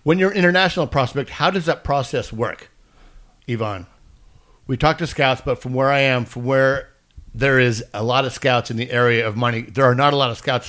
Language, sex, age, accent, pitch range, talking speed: English, male, 60-79, American, 115-140 Hz, 225 wpm